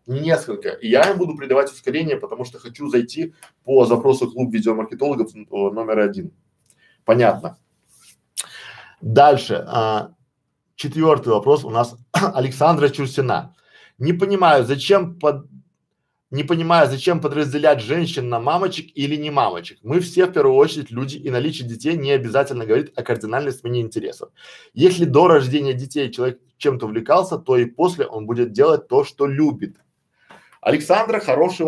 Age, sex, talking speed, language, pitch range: 20-39, male, 135 wpm, Russian, 125-175 Hz